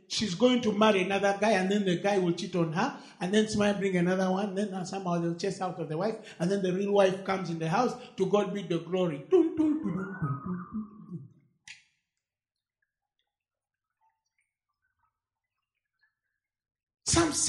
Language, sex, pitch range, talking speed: English, male, 195-315 Hz, 155 wpm